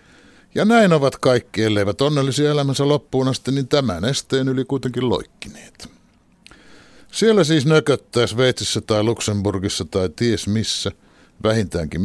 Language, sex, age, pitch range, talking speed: Finnish, male, 60-79, 100-135 Hz, 120 wpm